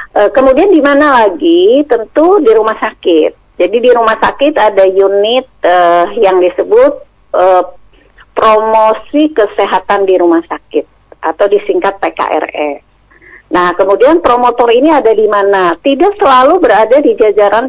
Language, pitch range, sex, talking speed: Indonesian, 195-295 Hz, female, 130 wpm